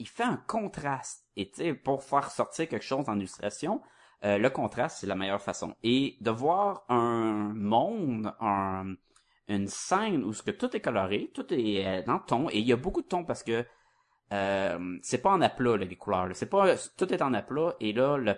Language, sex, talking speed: French, male, 215 wpm